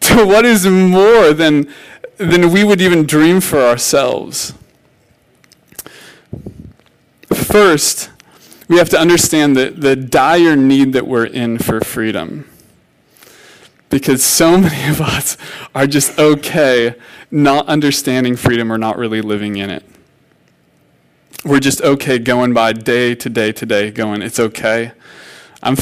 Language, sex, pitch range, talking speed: English, male, 125-170 Hz, 130 wpm